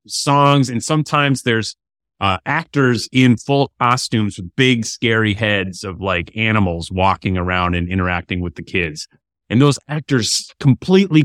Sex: male